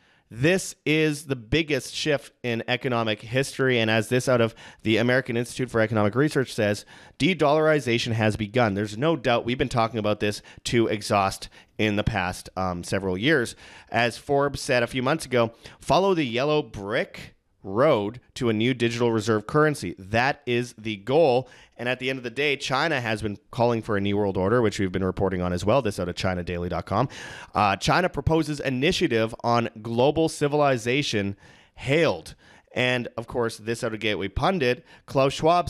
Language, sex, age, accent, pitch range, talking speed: English, male, 30-49, American, 110-140 Hz, 180 wpm